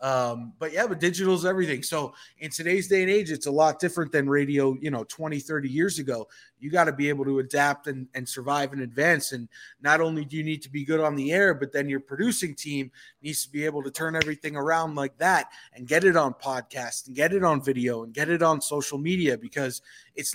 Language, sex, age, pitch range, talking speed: English, male, 30-49, 135-160 Hz, 245 wpm